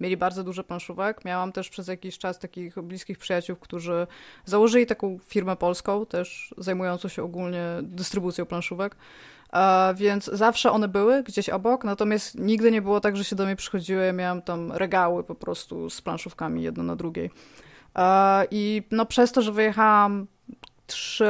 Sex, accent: female, native